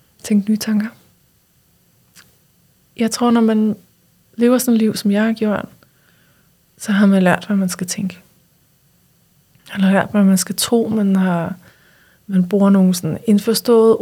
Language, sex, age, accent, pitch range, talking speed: Danish, female, 20-39, native, 190-225 Hz, 155 wpm